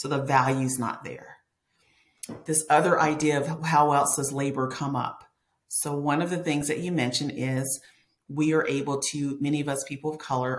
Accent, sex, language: American, female, English